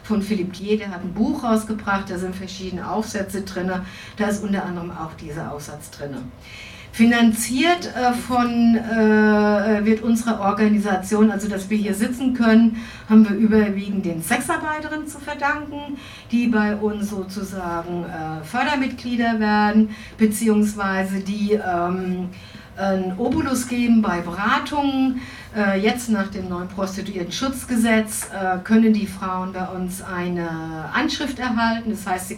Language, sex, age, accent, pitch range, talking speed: German, female, 60-79, German, 185-225 Hz, 135 wpm